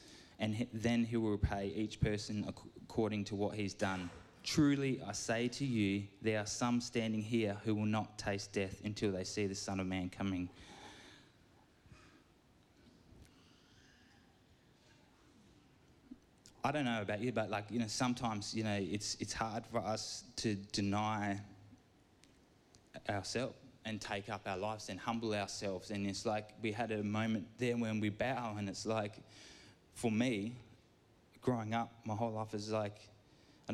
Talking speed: 155 wpm